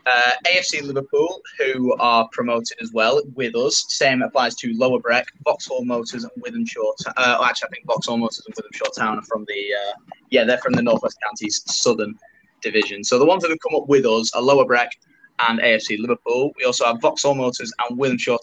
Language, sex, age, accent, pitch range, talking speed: English, male, 10-29, British, 120-155 Hz, 210 wpm